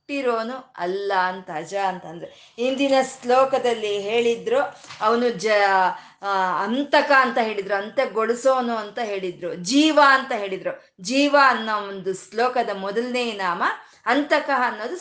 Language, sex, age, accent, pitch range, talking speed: Kannada, female, 20-39, native, 195-250 Hz, 110 wpm